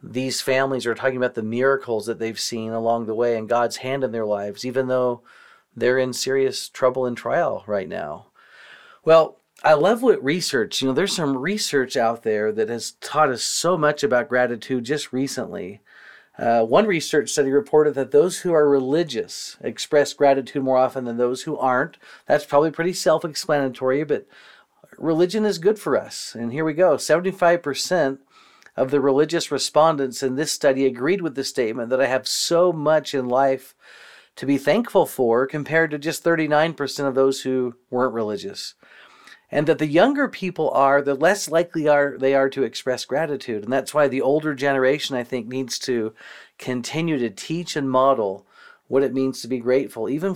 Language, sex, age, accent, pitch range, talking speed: English, male, 40-59, American, 125-155 Hz, 185 wpm